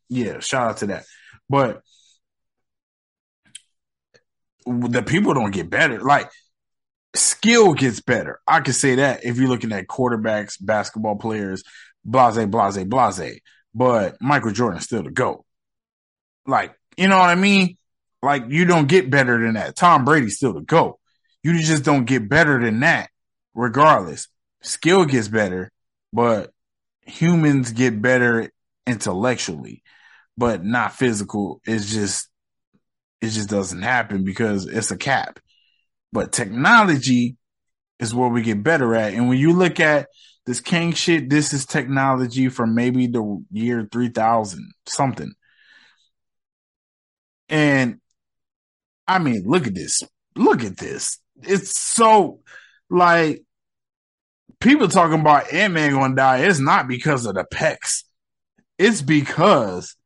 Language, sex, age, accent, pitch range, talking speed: English, male, 20-39, American, 115-160 Hz, 135 wpm